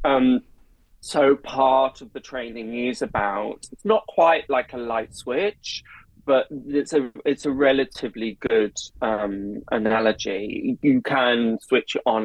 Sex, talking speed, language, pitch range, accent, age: male, 140 wpm, English, 110-155 Hz, British, 20-39